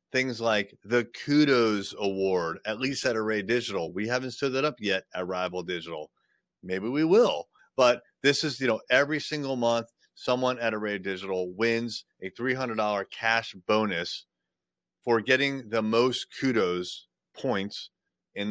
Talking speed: 150 wpm